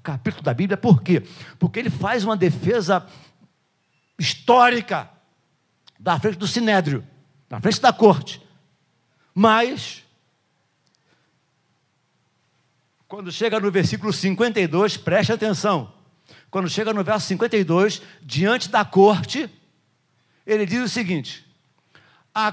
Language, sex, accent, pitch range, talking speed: Portuguese, male, Brazilian, 170-245 Hz, 105 wpm